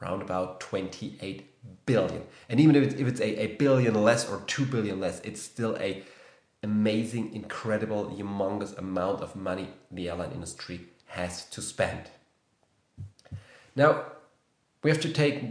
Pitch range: 105-130 Hz